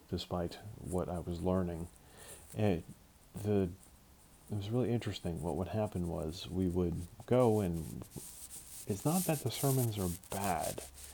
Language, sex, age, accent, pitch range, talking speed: English, male, 40-59, American, 90-110 Hz, 140 wpm